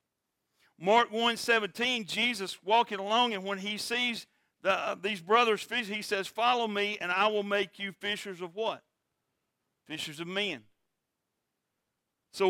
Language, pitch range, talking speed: English, 170-220 Hz, 150 wpm